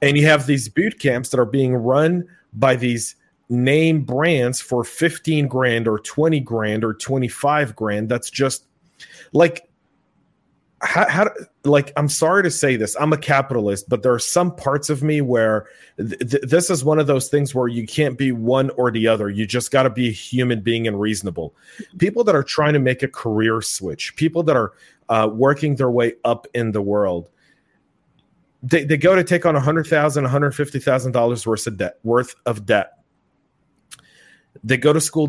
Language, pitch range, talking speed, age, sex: English, 115-145 Hz, 190 wpm, 30-49, male